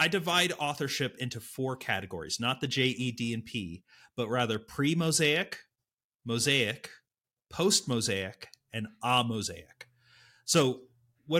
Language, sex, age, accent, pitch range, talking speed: English, male, 30-49, American, 115-155 Hz, 120 wpm